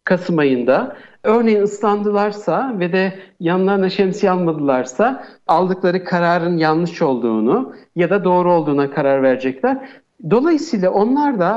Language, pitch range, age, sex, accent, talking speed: Turkish, 160-210 Hz, 60-79, male, native, 115 wpm